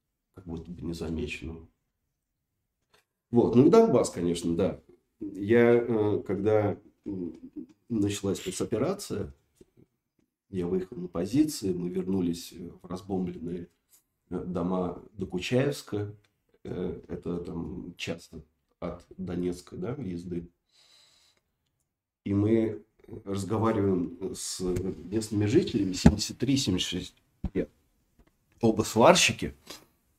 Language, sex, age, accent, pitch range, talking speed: Russian, male, 40-59, native, 90-110 Hz, 80 wpm